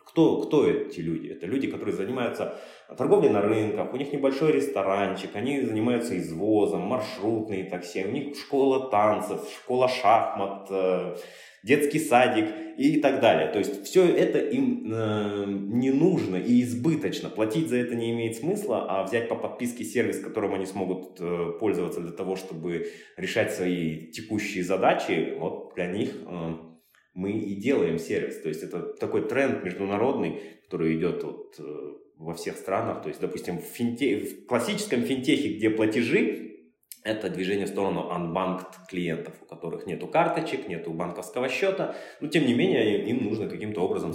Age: 20-39